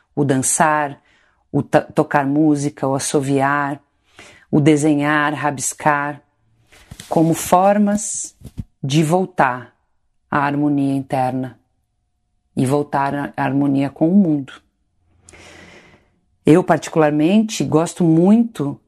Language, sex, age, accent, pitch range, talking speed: Portuguese, female, 40-59, Brazilian, 135-155 Hz, 90 wpm